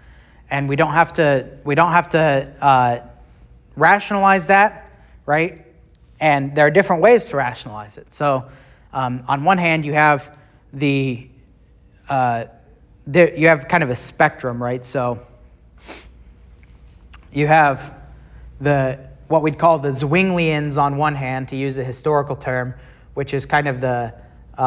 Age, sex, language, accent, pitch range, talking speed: 30-49, male, English, American, 120-150 Hz, 145 wpm